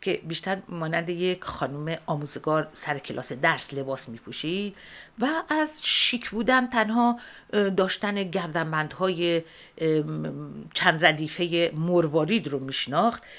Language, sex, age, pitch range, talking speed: Persian, female, 50-69, 155-205 Hz, 115 wpm